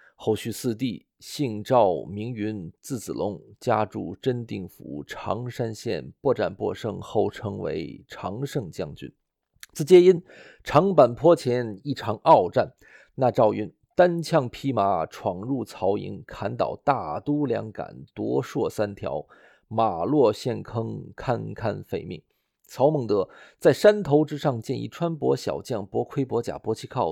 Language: Chinese